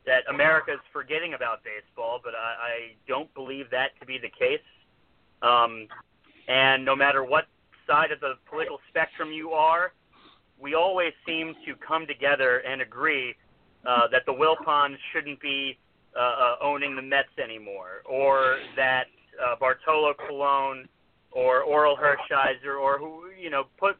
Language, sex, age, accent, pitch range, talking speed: English, male, 30-49, American, 130-160 Hz, 150 wpm